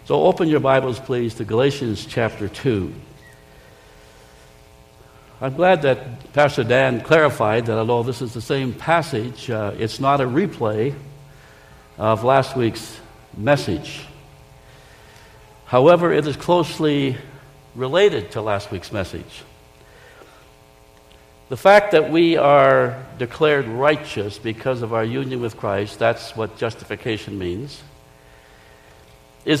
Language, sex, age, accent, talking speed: English, male, 60-79, American, 120 wpm